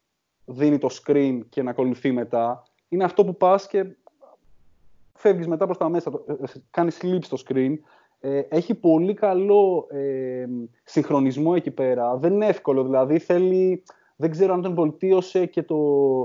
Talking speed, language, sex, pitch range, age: 150 wpm, Greek, male, 135-180 Hz, 20-39